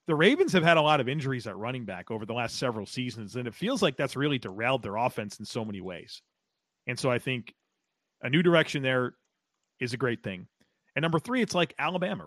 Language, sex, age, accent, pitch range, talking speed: English, male, 40-59, American, 120-160 Hz, 230 wpm